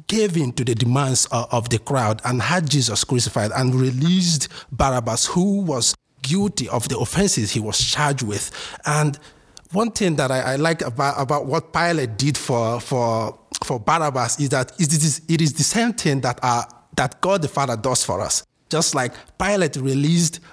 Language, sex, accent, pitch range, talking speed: English, male, Nigerian, 125-165 Hz, 185 wpm